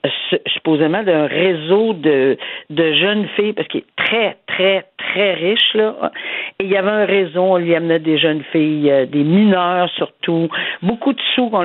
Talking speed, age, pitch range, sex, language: 175 wpm, 50-69, 175-215 Hz, female, French